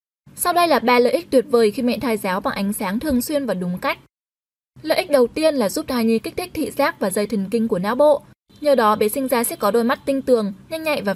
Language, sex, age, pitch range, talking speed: Vietnamese, female, 10-29, 220-285 Hz, 285 wpm